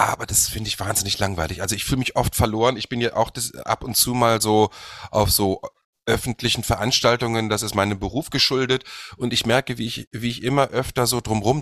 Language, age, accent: German, 30-49, German